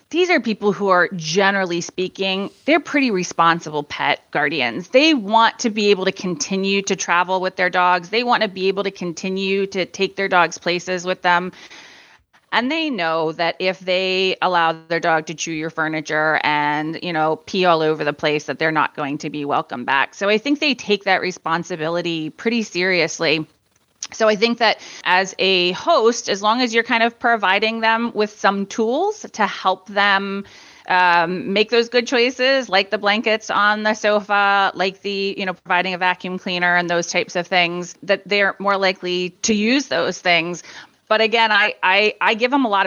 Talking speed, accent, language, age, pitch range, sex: 190 wpm, American, English, 30-49, 170-210 Hz, female